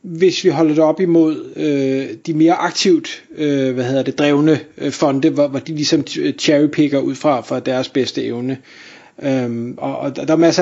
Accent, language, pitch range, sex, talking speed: native, Danish, 155-200 Hz, male, 200 wpm